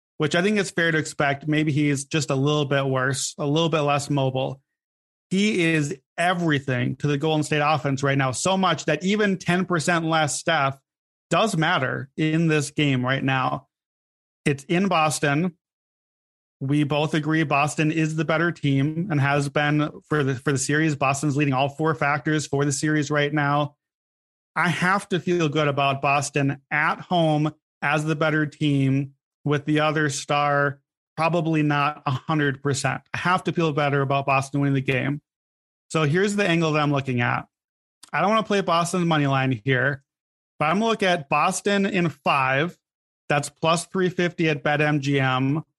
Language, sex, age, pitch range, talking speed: English, male, 30-49, 140-165 Hz, 175 wpm